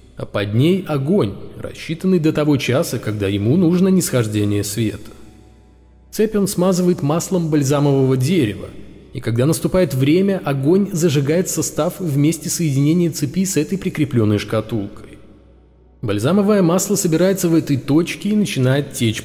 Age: 20-39